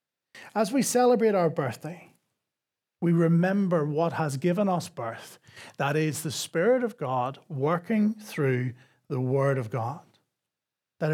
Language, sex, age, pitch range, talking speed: English, male, 40-59, 140-175 Hz, 135 wpm